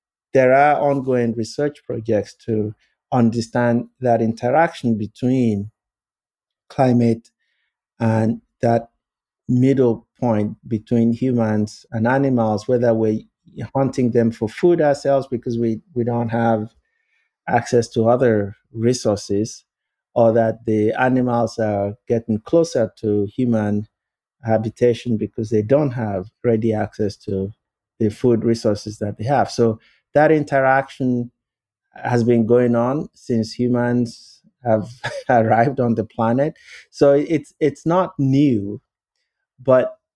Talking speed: 115 wpm